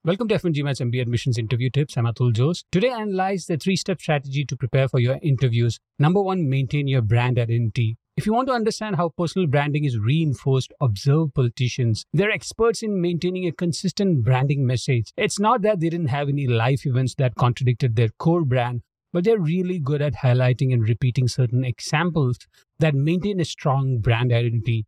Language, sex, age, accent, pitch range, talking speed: English, male, 50-69, Indian, 125-175 Hz, 190 wpm